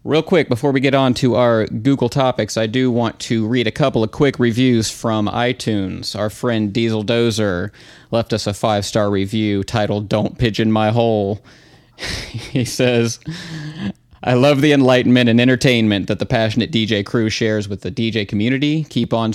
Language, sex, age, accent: English, male, 30-49, American